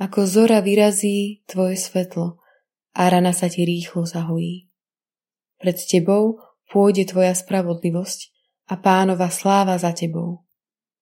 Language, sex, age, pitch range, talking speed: Slovak, female, 20-39, 180-205 Hz, 115 wpm